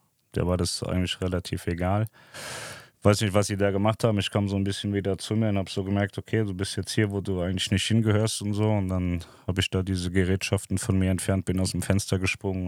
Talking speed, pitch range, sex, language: 250 wpm, 90-105 Hz, male, German